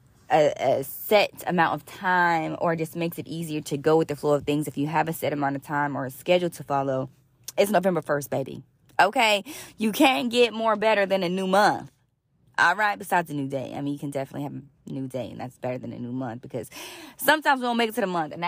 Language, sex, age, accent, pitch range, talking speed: English, female, 20-39, American, 145-190 Hz, 250 wpm